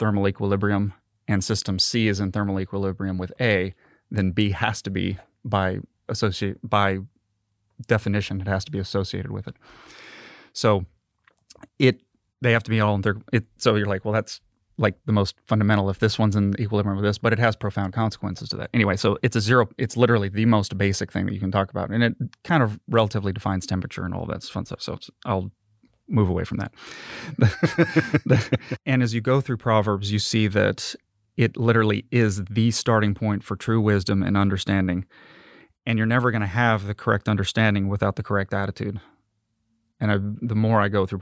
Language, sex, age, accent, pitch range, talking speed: English, male, 30-49, American, 100-115 Hz, 195 wpm